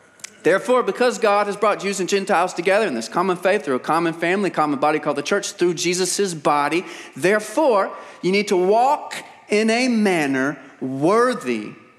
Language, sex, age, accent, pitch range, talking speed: English, male, 40-59, American, 155-215 Hz, 170 wpm